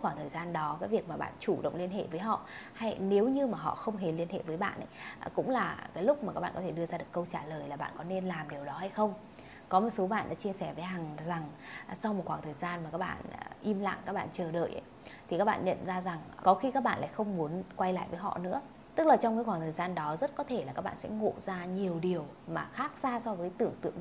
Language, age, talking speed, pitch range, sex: Vietnamese, 20-39, 295 wpm, 165-210 Hz, female